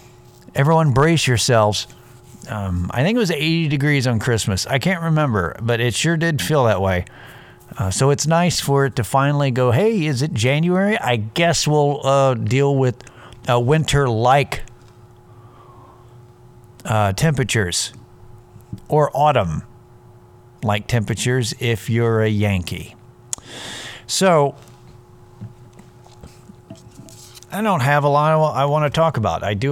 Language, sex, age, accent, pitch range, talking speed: English, male, 50-69, American, 110-135 Hz, 130 wpm